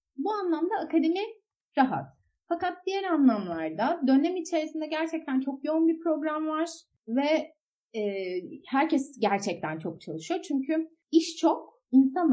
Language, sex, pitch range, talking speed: Turkish, female, 215-315 Hz, 115 wpm